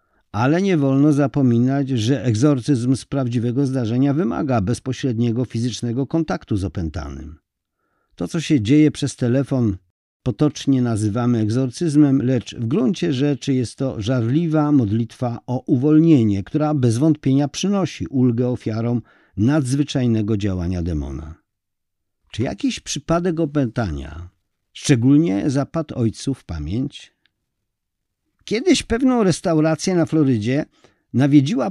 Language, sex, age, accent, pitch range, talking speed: Polish, male, 50-69, native, 115-160 Hz, 110 wpm